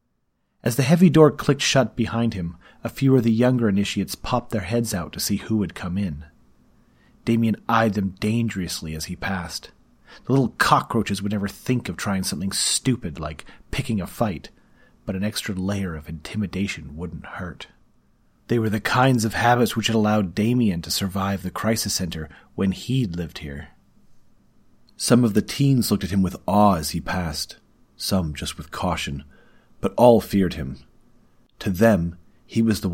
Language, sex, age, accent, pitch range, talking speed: English, male, 30-49, American, 85-110 Hz, 175 wpm